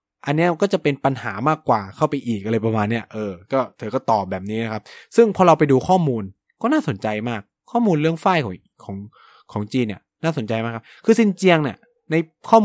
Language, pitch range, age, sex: Thai, 110-155 Hz, 20-39, male